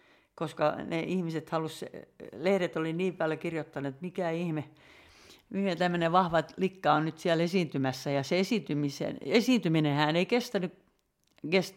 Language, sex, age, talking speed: Finnish, female, 60-79, 140 wpm